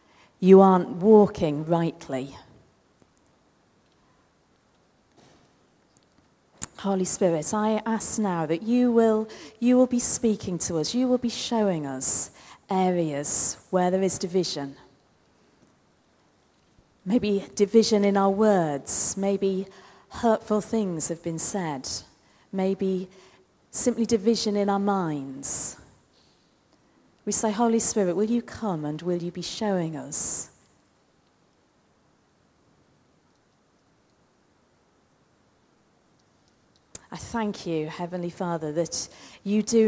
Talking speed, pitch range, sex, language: 100 wpm, 165-210 Hz, female, English